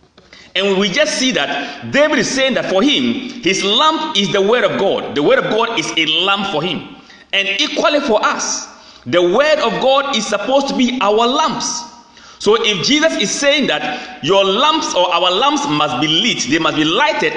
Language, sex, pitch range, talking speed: English, male, 190-285 Hz, 205 wpm